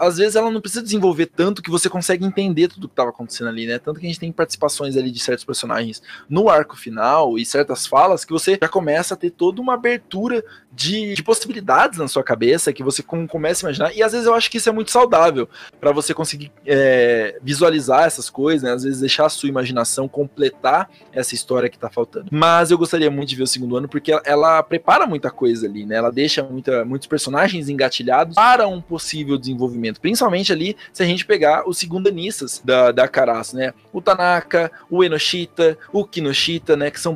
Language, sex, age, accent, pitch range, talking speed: Portuguese, male, 20-39, Brazilian, 135-190 Hz, 210 wpm